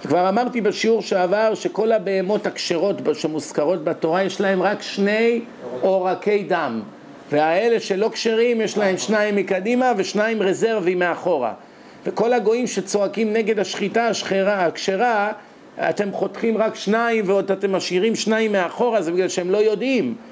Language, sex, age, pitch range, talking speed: Hebrew, male, 50-69, 185-225 Hz, 135 wpm